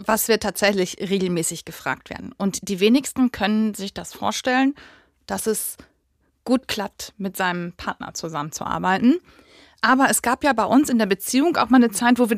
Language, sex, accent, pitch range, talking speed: German, female, German, 205-255 Hz, 175 wpm